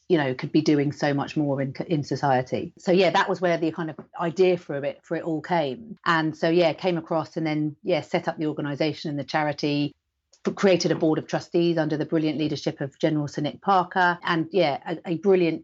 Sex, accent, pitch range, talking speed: female, British, 155-180 Hz, 230 wpm